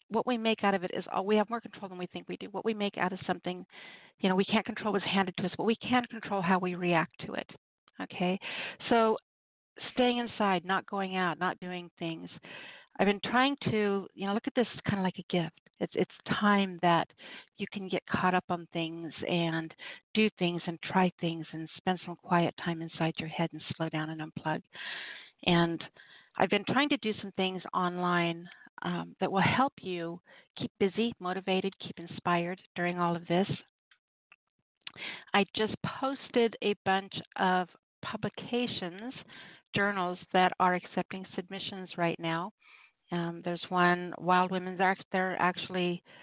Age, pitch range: 50-69, 175-200 Hz